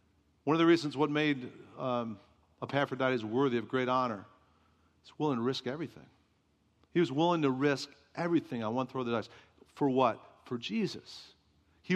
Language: English